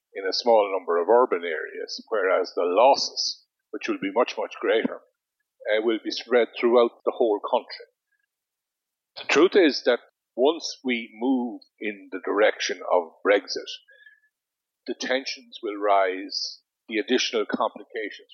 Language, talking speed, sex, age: English, 140 wpm, male, 50-69